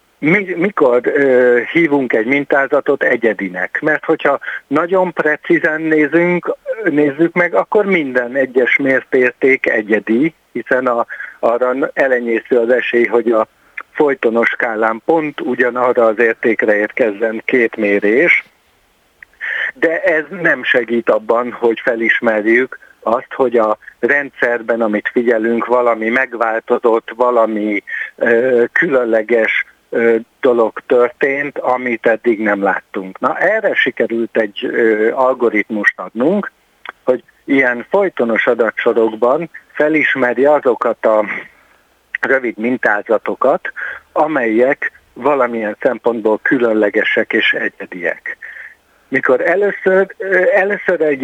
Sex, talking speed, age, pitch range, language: male, 95 wpm, 60-79, 115-150 Hz, Hungarian